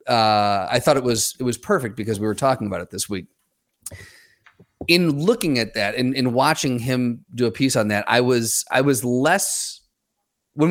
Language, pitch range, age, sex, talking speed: English, 115-150 Hz, 30-49, male, 195 wpm